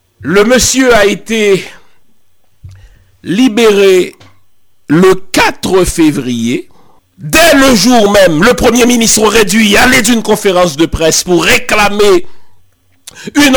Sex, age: male, 60-79